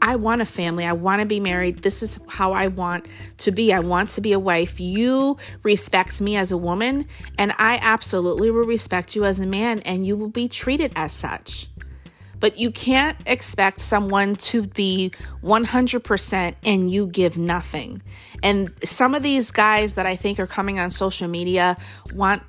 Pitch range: 180-230 Hz